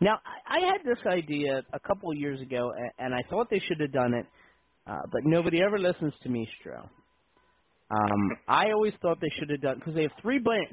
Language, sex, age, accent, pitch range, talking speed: English, male, 40-59, American, 145-230 Hz, 215 wpm